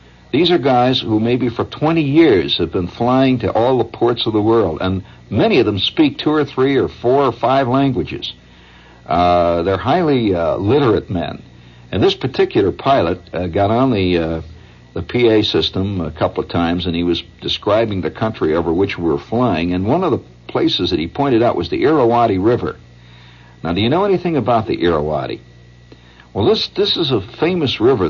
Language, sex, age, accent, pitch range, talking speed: English, male, 60-79, American, 80-115 Hz, 195 wpm